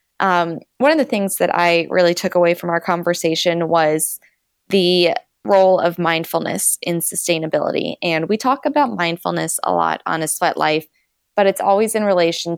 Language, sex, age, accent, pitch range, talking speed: English, female, 20-39, American, 165-190 Hz, 170 wpm